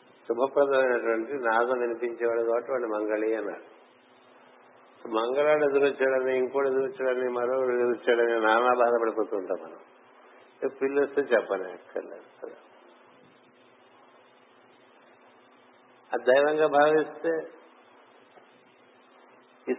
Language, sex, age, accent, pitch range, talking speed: Telugu, male, 60-79, native, 120-140 Hz, 75 wpm